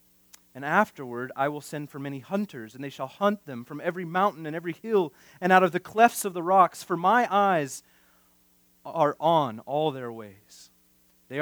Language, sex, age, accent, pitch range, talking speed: English, male, 30-49, American, 110-175 Hz, 190 wpm